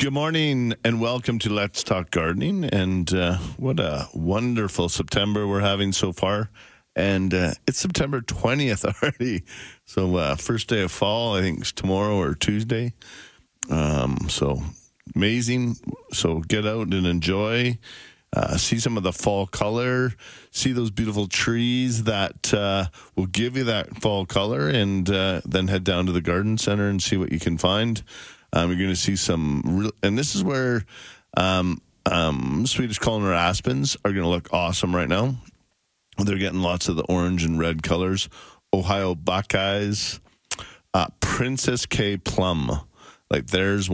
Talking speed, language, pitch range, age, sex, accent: 160 wpm, English, 90-110 Hz, 40-59, male, American